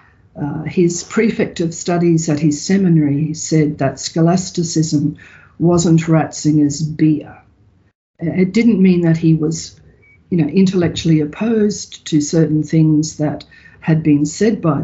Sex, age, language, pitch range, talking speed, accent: female, 50-69, English, 150-175 Hz, 130 wpm, Australian